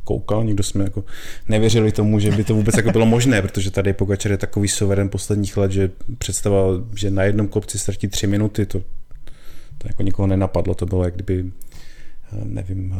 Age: 30-49